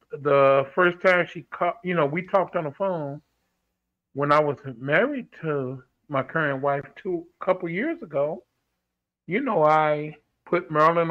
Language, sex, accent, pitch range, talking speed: English, male, American, 140-180 Hz, 155 wpm